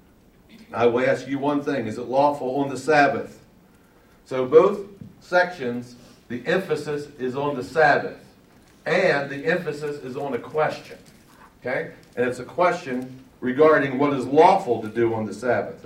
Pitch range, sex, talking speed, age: 130-155 Hz, male, 160 wpm, 60-79